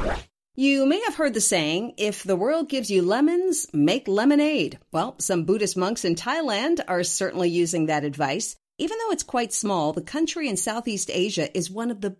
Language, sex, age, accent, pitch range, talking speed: English, female, 50-69, American, 175-270 Hz, 190 wpm